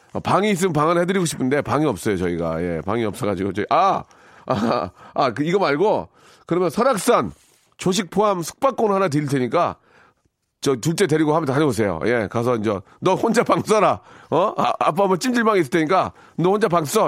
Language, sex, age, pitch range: Korean, male, 40-59, 125-185 Hz